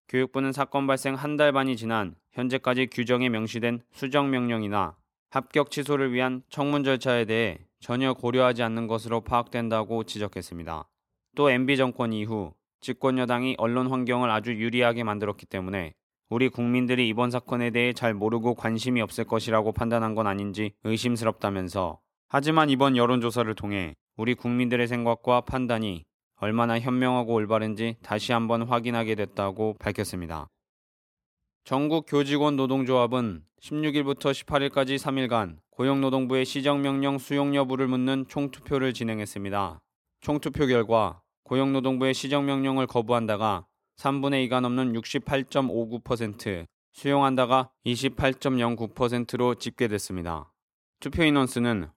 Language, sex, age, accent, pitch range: Korean, male, 20-39, native, 110-135 Hz